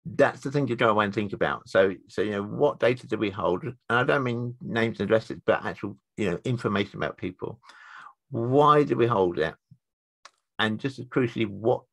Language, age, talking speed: English, 50-69, 205 wpm